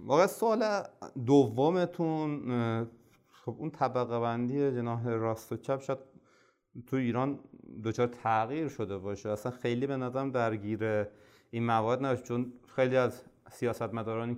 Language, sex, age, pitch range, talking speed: Persian, male, 30-49, 115-140 Hz, 125 wpm